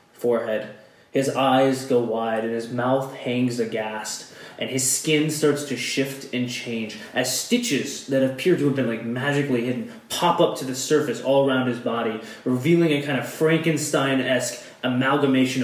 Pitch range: 120-145 Hz